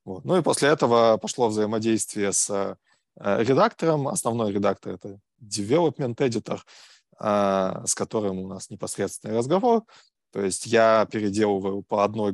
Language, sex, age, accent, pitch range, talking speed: Russian, male, 20-39, native, 100-115 Hz, 120 wpm